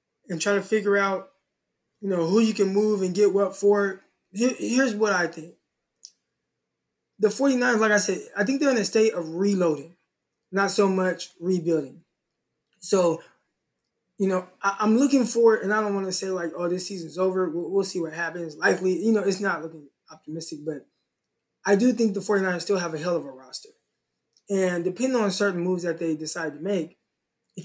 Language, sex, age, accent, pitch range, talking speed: English, male, 20-39, American, 170-210 Hz, 200 wpm